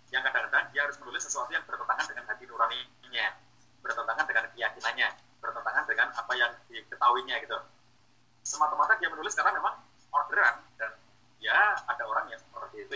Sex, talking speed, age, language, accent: male, 155 wpm, 30-49, Indonesian, native